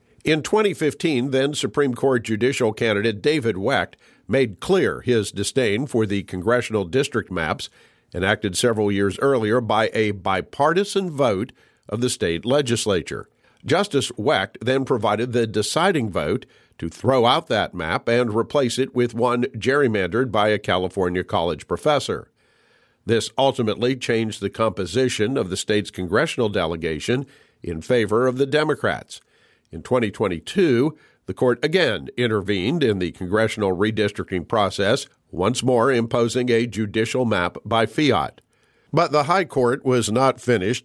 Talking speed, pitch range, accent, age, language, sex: 135 wpm, 105-130 Hz, American, 50-69, English, male